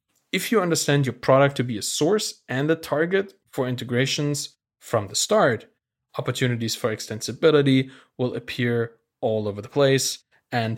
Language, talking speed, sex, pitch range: English, 150 wpm, male, 110-145 Hz